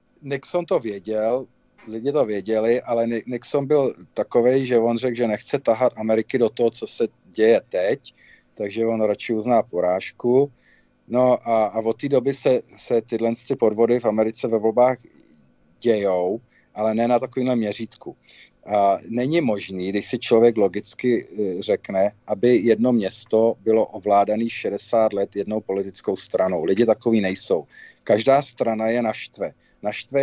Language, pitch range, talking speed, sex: Czech, 110-125 Hz, 145 wpm, male